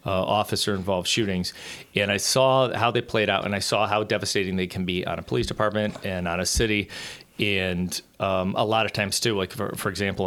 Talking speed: 215 wpm